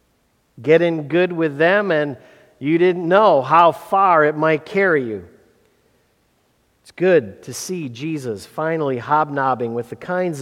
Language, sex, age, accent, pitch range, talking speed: English, male, 50-69, American, 120-165 Hz, 145 wpm